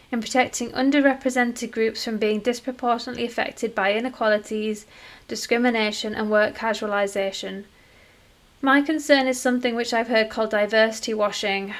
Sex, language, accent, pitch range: female, English, British, 215-250 Hz